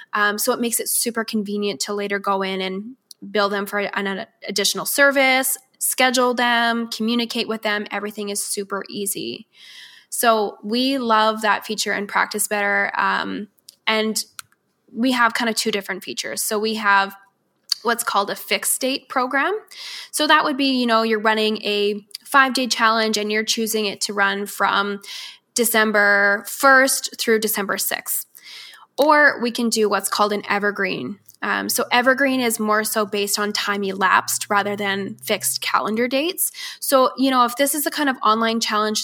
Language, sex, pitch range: English, female, 205-245 Hz